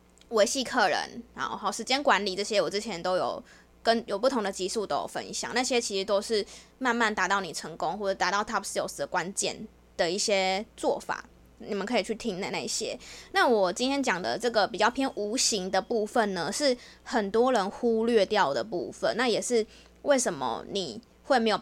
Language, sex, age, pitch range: Chinese, female, 20-39, 200-235 Hz